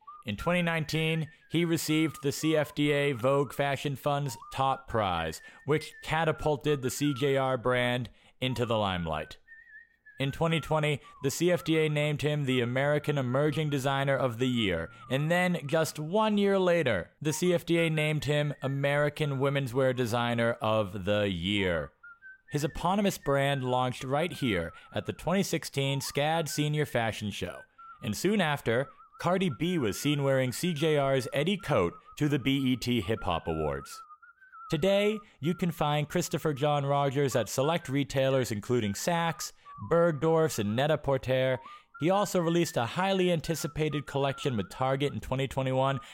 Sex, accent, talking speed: male, American, 140 wpm